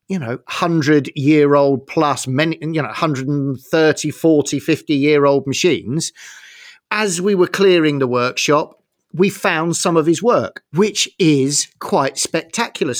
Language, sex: English, male